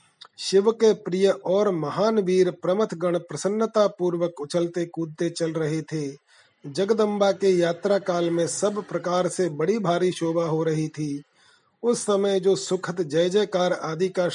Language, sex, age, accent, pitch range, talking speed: Hindi, male, 40-59, native, 165-195 Hz, 155 wpm